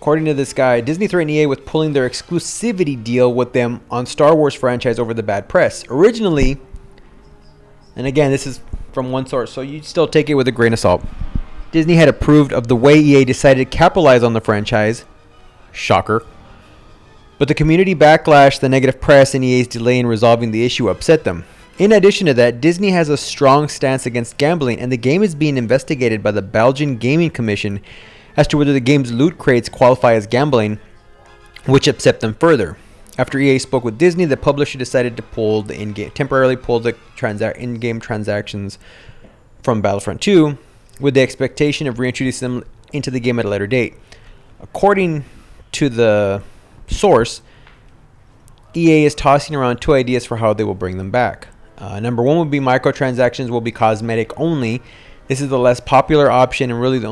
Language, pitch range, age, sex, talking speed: English, 115-145 Hz, 30-49, male, 185 wpm